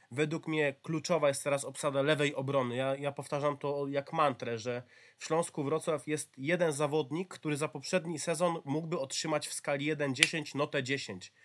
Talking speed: 175 wpm